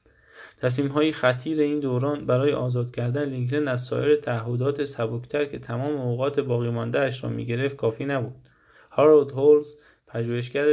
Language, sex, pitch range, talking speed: Persian, male, 120-140 Hz, 130 wpm